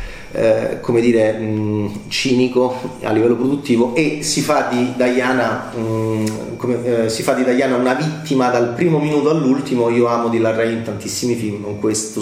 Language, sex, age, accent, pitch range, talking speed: Italian, male, 30-49, native, 110-130 Hz, 170 wpm